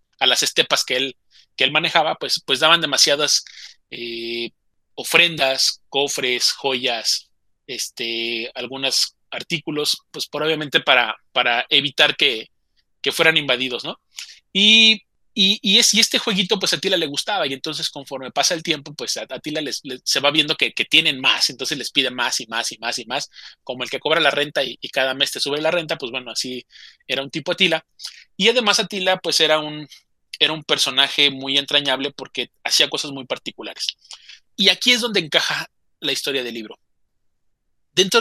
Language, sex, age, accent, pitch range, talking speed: Spanish, male, 30-49, Mexican, 135-175 Hz, 185 wpm